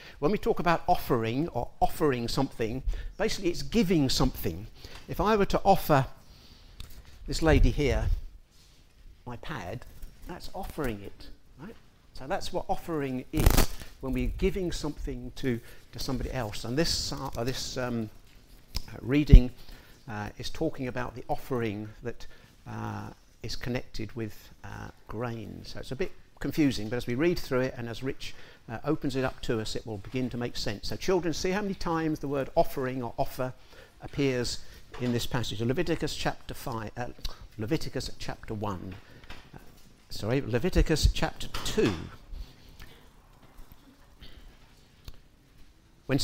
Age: 50-69